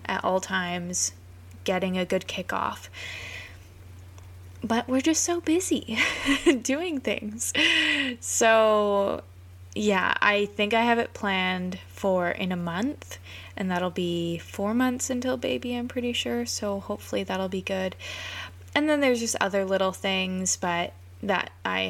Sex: female